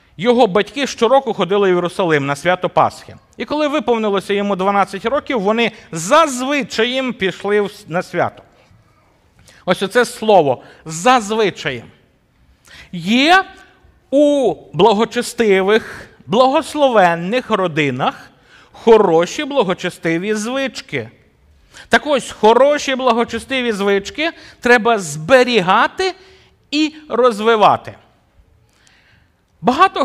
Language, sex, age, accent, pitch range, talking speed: Ukrainian, male, 50-69, native, 180-260 Hz, 85 wpm